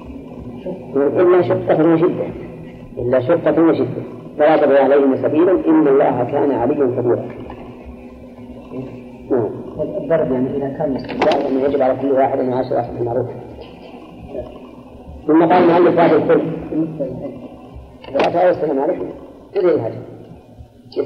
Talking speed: 45 wpm